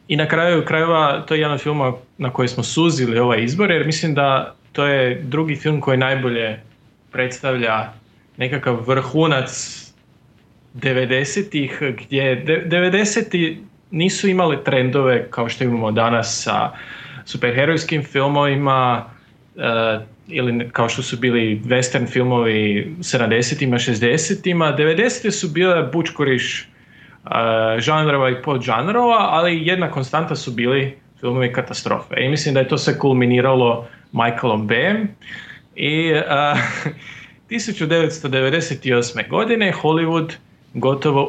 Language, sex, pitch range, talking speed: Croatian, male, 125-160 Hz, 120 wpm